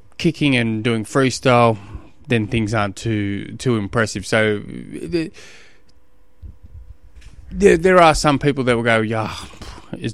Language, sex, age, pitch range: English, male, 20-39, 100-135 Hz